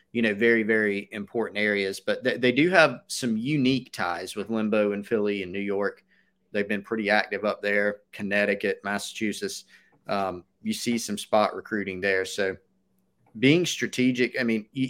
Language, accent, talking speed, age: English, American, 170 wpm, 30-49